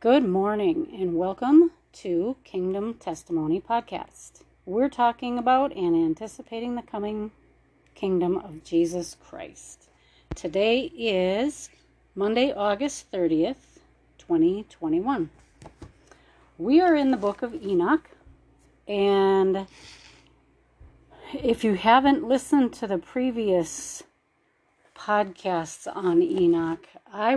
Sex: female